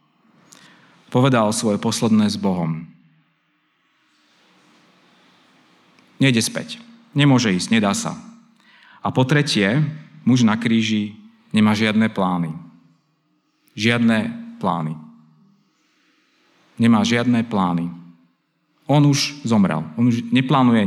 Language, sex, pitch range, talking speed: Slovak, male, 105-175 Hz, 90 wpm